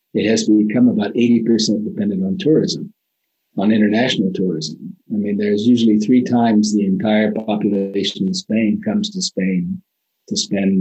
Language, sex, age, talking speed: English, male, 50-69, 155 wpm